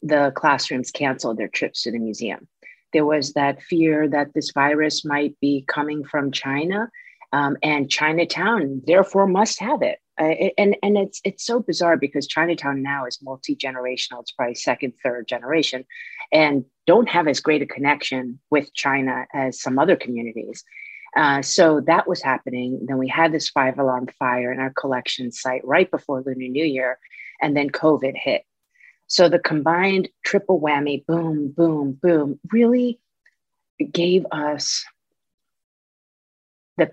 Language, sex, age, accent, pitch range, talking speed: English, female, 40-59, American, 140-180 Hz, 155 wpm